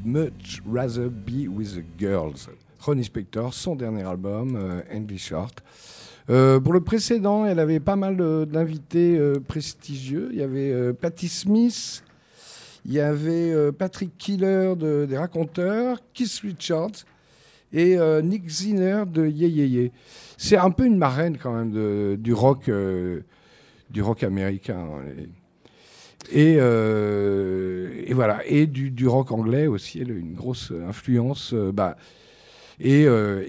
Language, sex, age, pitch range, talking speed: French, male, 50-69, 110-160 Hz, 150 wpm